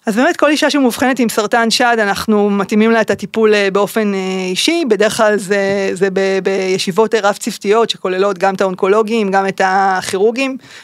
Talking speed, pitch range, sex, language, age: 160 wpm, 195-225 Hz, female, Hebrew, 20-39